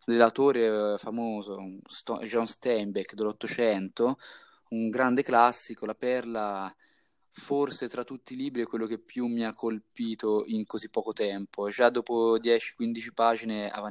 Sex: male